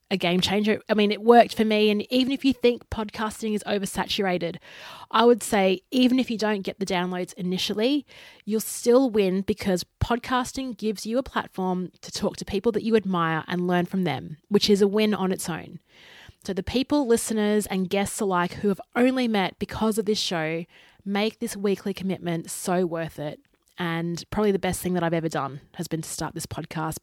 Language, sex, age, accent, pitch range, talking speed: English, female, 20-39, Australian, 180-220 Hz, 205 wpm